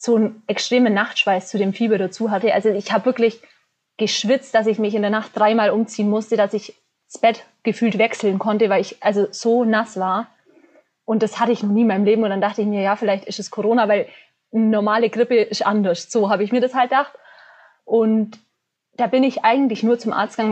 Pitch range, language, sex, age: 205-235 Hz, German, female, 20-39